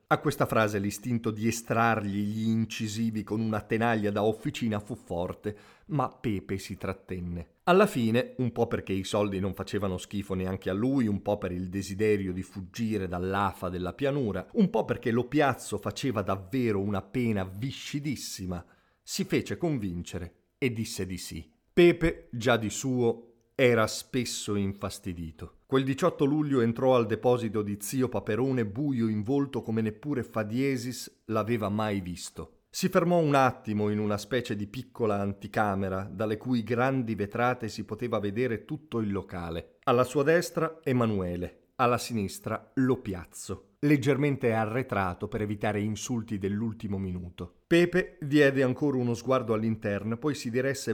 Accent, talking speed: native, 150 wpm